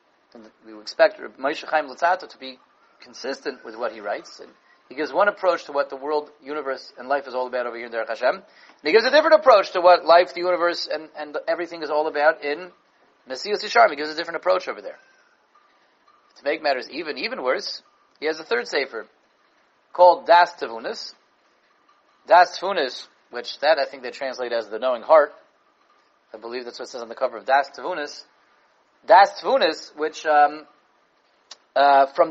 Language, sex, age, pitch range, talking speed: English, male, 30-49, 130-170 Hz, 195 wpm